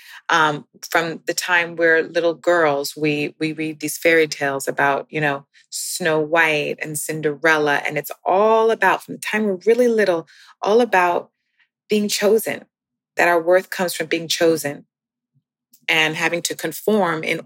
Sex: female